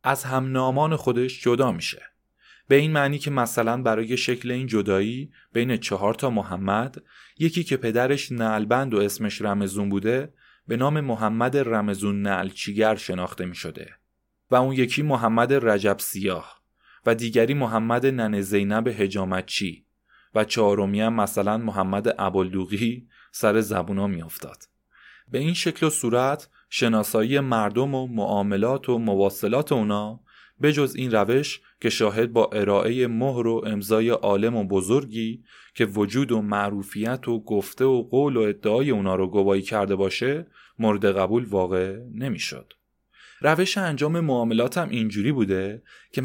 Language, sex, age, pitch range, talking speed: Persian, male, 20-39, 100-130 Hz, 135 wpm